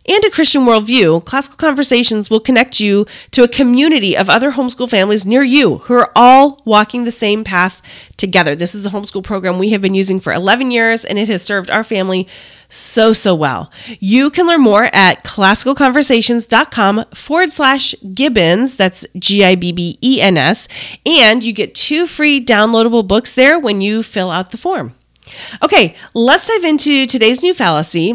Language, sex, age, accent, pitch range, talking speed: English, female, 30-49, American, 200-280 Hz, 170 wpm